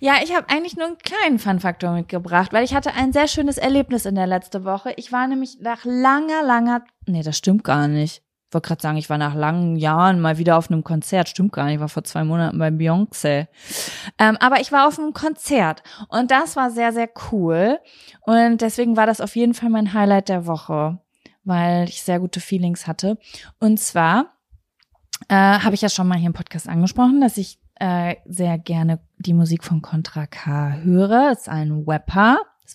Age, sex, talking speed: 20-39, female, 205 wpm